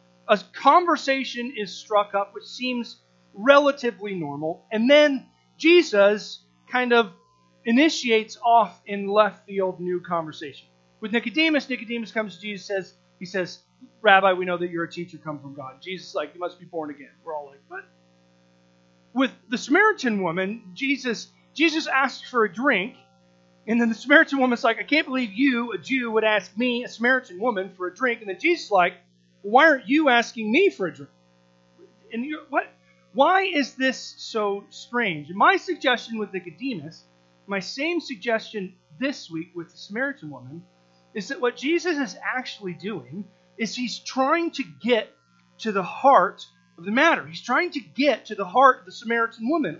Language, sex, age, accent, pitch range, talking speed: English, male, 30-49, American, 160-260 Hz, 180 wpm